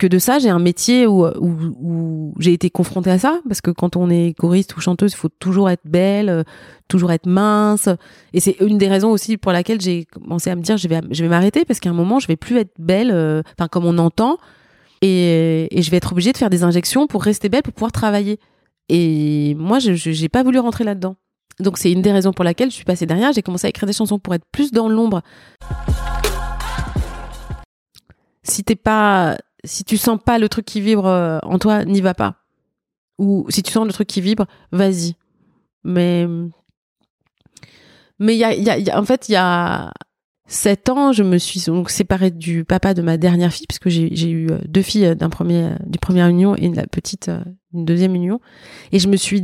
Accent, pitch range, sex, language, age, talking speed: French, 175-210 Hz, female, French, 30-49, 220 wpm